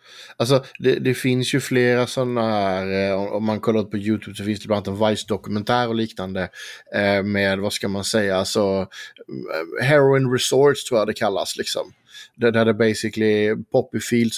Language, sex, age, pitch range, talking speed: Swedish, male, 20-39, 100-115 Hz, 180 wpm